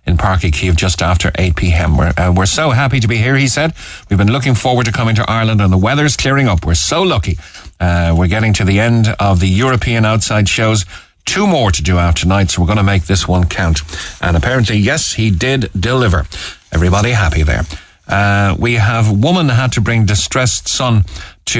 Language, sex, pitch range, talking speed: English, male, 90-115 Hz, 210 wpm